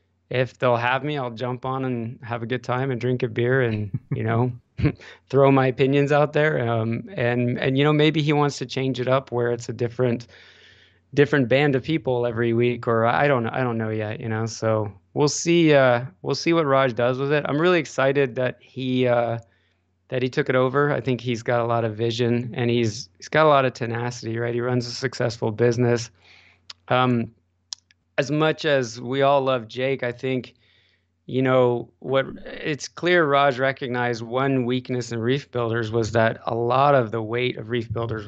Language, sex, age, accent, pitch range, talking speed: English, male, 20-39, American, 115-130 Hz, 205 wpm